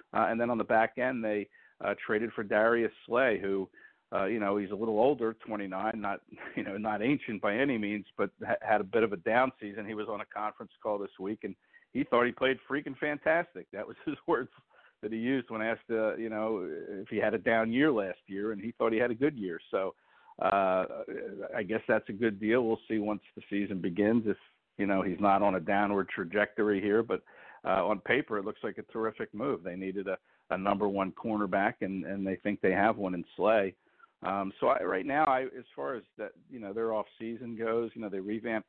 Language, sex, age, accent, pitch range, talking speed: English, male, 50-69, American, 100-115 Hz, 235 wpm